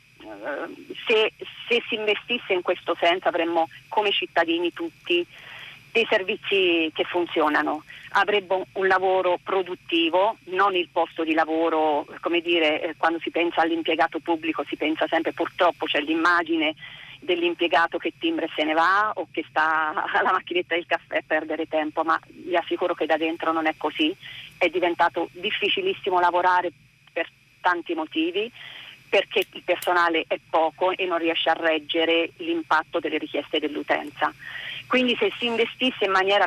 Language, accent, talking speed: Italian, native, 150 wpm